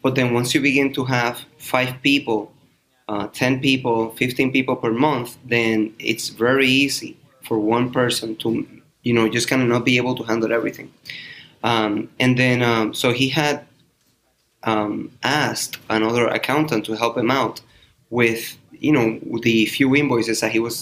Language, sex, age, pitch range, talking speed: English, male, 20-39, 115-135 Hz, 170 wpm